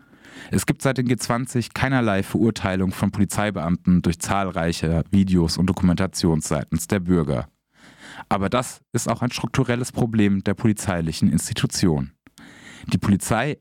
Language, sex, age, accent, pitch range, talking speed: German, male, 30-49, German, 90-115 Hz, 130 wpm